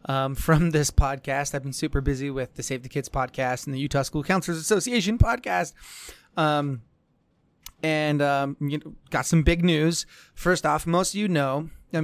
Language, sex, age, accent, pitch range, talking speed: English, male, 20-39, American, 135-165 Hz, 175 wpm